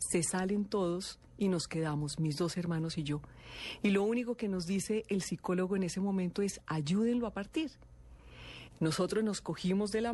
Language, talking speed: Spanish, 185 wpm